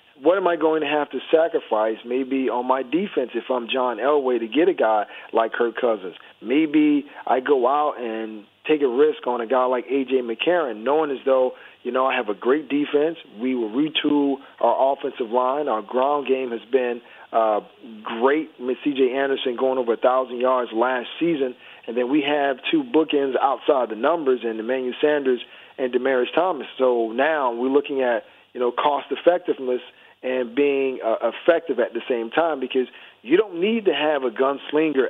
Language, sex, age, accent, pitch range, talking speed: English, male, 40-59, American, 125-160 Hz, 185 wpm